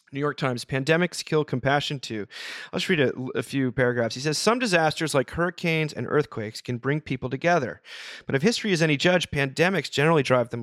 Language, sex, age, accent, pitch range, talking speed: English, male, 30-49, American, 120-155 Hz, 205 wpm